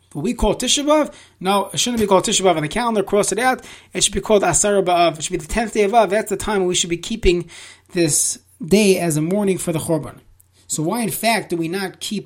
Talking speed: 270 wpm